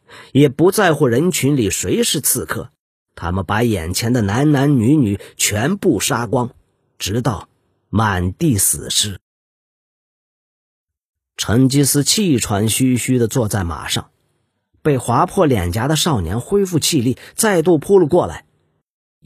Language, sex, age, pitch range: Chinese, male, 40-59, 95-150 Hz